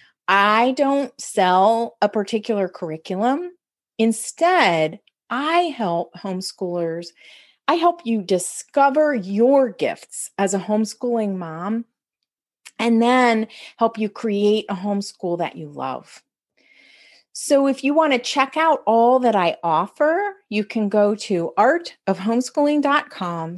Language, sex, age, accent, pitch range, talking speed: English, female, 40-59, American, 185-275 Hz, 115 wpm